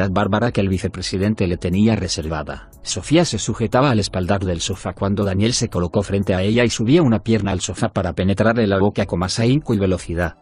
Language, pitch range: Spanish, 95-110 Hz